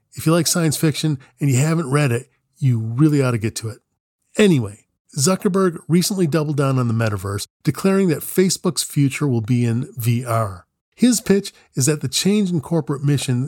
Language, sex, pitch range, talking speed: English, male, 115-155 Hz, 185 wpm